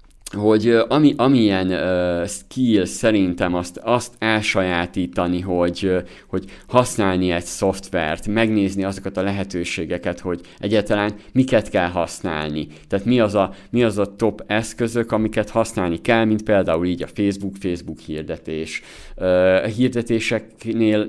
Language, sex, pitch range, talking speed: Hungarian, male, 90-115 Hz, 130 wpm